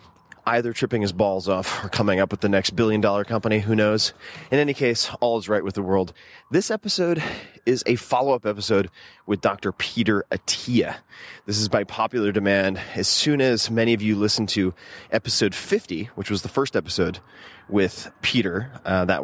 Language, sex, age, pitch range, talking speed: English, male, 30-49, 100-125 Hz, 180 wpm